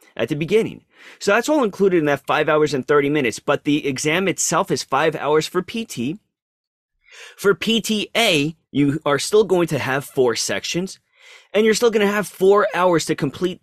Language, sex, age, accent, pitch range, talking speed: English, male, 30-49, American, 140-185 Hz, 190 wpm